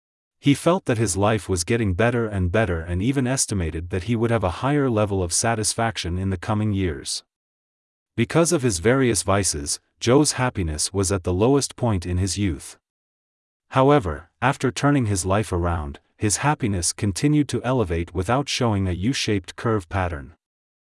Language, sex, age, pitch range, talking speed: English, male, 30-49, 90-120 Hz, 165 wpm